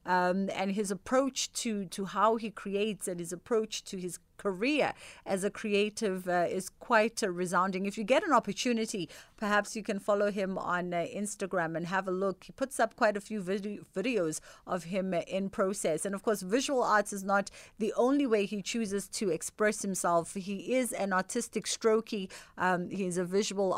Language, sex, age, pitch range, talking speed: English, female, 40-59, 185-225 Hz, 190 wpm